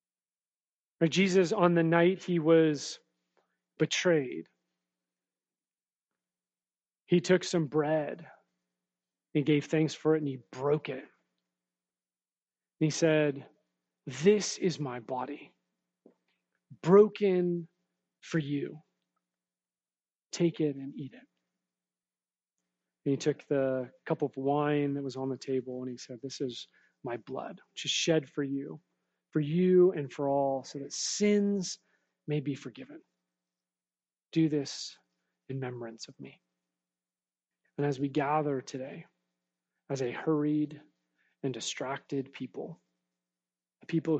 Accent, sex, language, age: American, male, English, 30-49